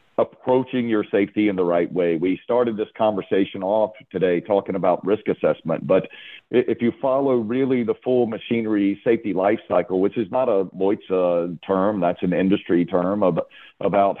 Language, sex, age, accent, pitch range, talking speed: English, male, 50-69, American, 90-110 Hz, 170 wpm